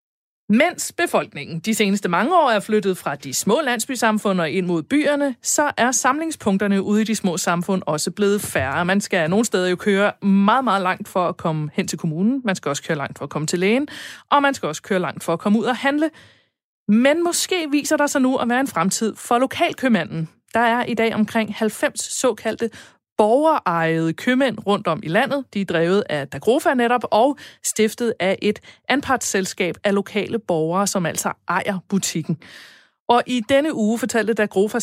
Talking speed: 195 wpm